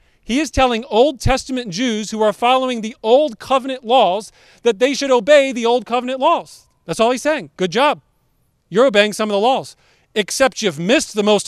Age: 40-59